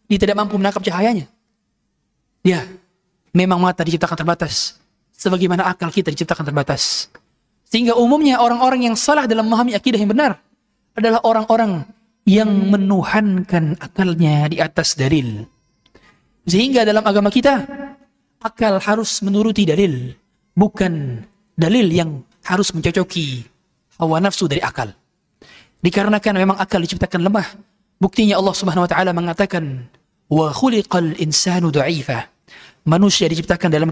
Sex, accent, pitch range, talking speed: male, native, 170-230 Hz, 120 wpm